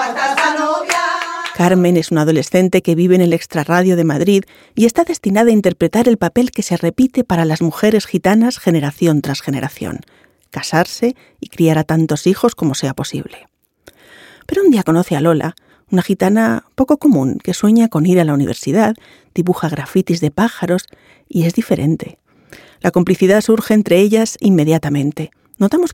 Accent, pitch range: Spanish, 165-215 Hz